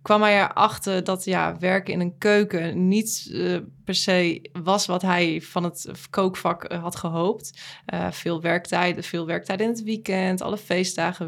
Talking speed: 165 wpm